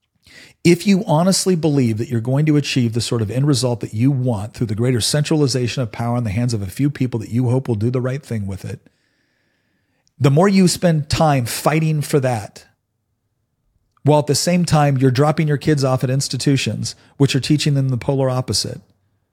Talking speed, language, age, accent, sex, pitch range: 210 wpm, English, 40-59, American, male, 120-150 Hz